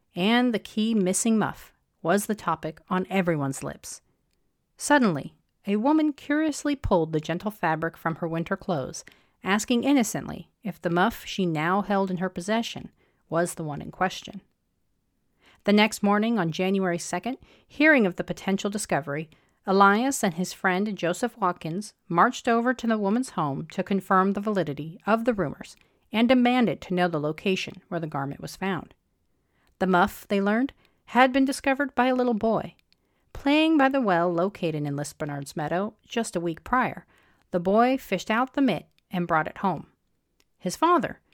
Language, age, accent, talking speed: English, 40-59, American, 165 wpm